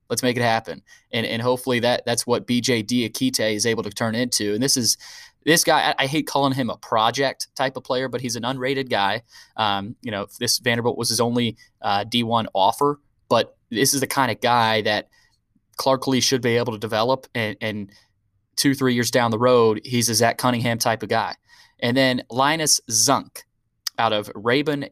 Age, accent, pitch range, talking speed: 20-39, American, 115-140 Hz, 205 wpm